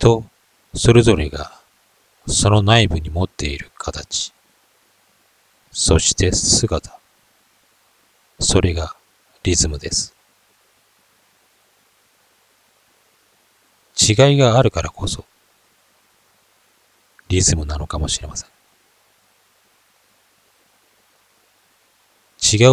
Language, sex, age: Japanese, male, 40-59